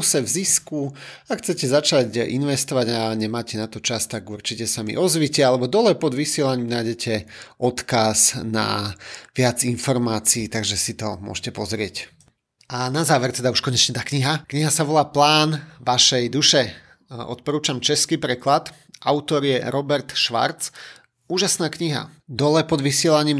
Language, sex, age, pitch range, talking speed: Slovak, male, 30-49, 125-155 Hz, 145 wpm